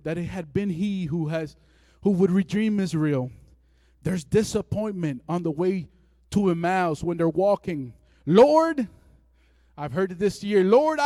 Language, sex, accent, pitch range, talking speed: English, male, American, 165-270 Hz, 150 wpm